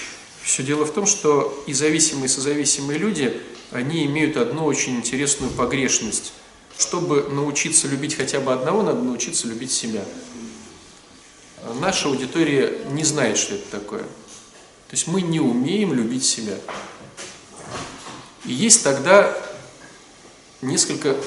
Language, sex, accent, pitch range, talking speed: Russian, male, native, 130-175 Hz, 125 wpm